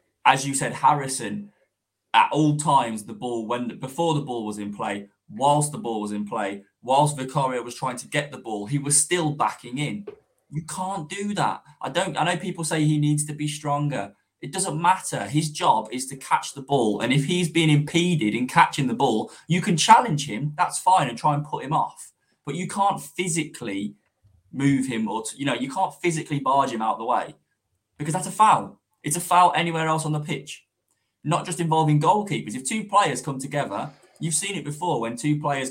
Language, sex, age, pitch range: English, male, 20-39, 120-155 Hz